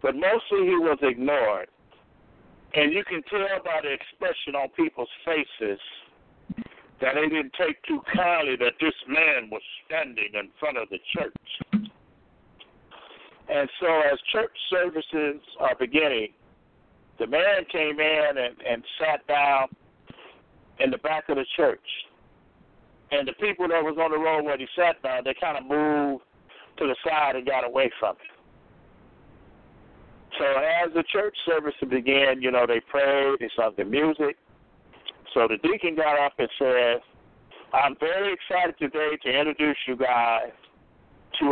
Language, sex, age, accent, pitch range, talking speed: English, male, 60-79, American, 140-195 Hz, 155 wpm